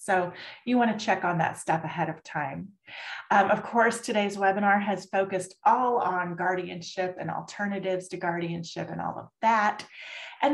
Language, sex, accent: English, female, American